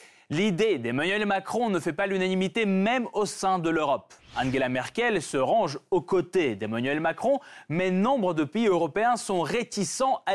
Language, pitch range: French, 145-210 Hz